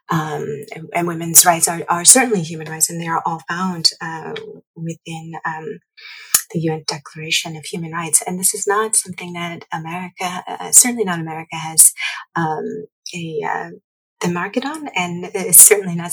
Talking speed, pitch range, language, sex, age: 170 wpm, 160-205 Hz, English, female, 30-49